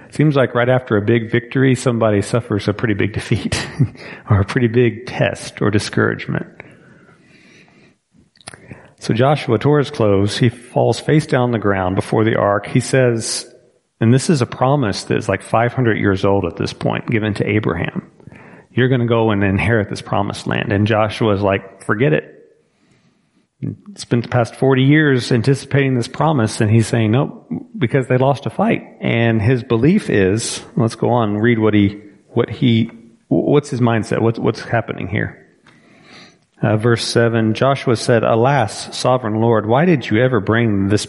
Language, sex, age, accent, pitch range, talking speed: English, male, 40-59, American, 105-130 Hz, 175 wpm